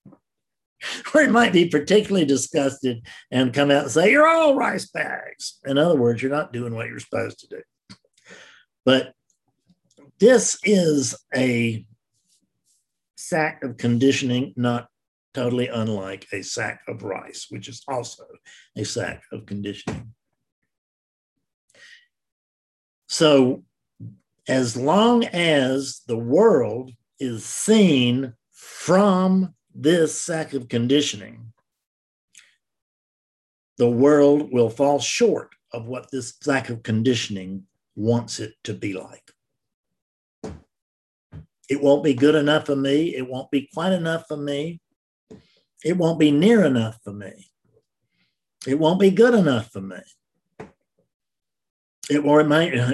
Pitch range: 115-160 Hz